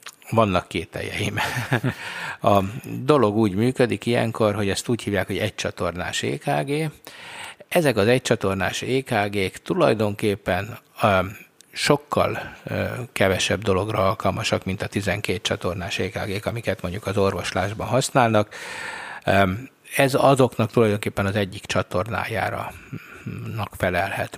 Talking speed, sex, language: 105 wpm, male, Hungarian